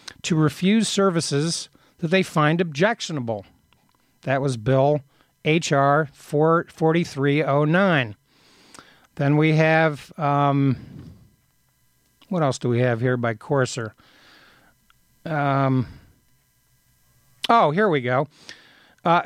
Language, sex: English, male